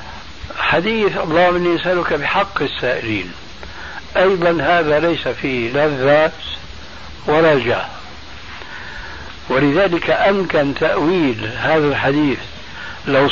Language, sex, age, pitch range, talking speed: Arabic, male, 60-79, 130-175 Hz, 80 wpm